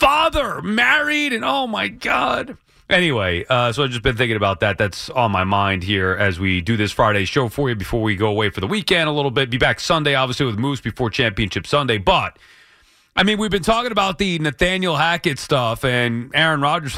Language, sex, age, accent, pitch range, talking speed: English, male, 30-49, American, 135-230 Hz, 220 wpm